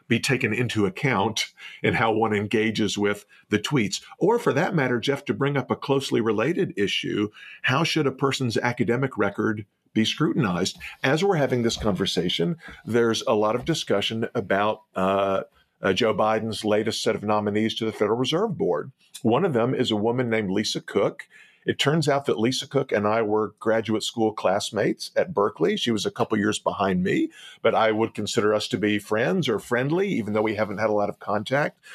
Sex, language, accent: male, English, American